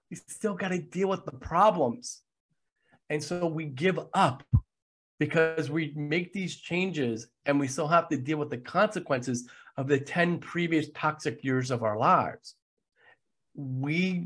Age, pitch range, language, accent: 40-59, 125-160 Hz, English, American